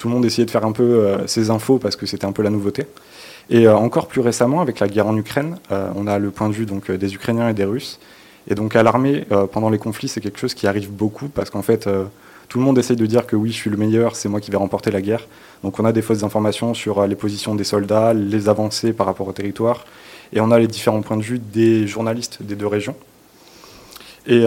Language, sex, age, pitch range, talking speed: French, male, 20-39, 105-125 Hz, 270 wpm